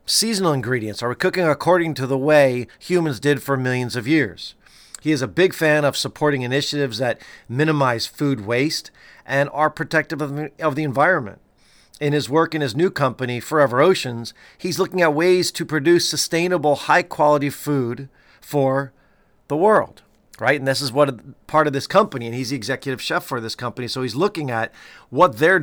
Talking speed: 180 wpm